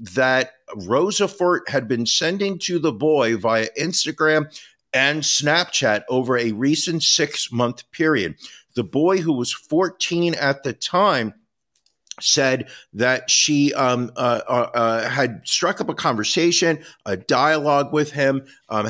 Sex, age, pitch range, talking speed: male, 50-69, 115-155 Hz, 130 wpm